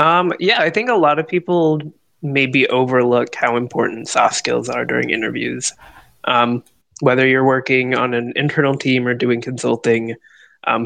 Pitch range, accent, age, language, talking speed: 120-135 Hz, American, 20-39, English, 160 wpm